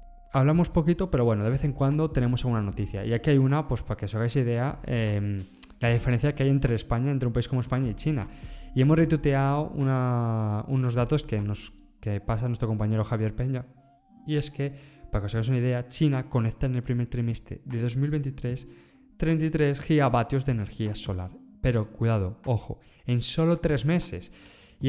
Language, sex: Spanish, male